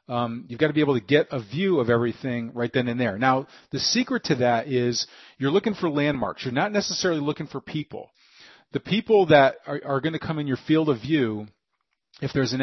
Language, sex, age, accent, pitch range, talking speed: English, male, 40-59, American, 125-155 Hz, 230 wpm